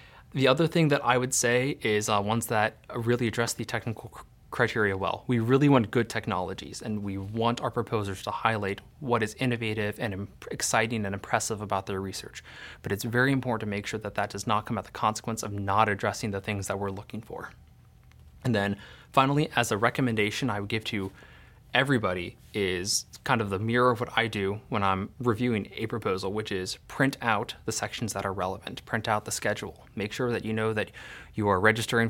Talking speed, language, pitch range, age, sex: 210 wpm, English, 100-120 Hz, 20-39, male